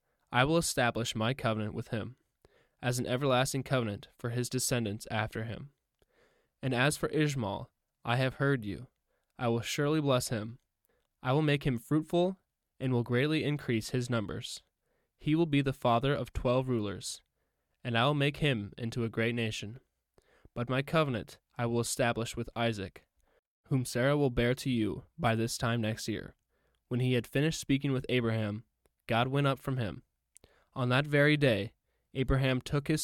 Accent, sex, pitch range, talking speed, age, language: American, male, 115-135 Hz, 175 wpm, 10-29, English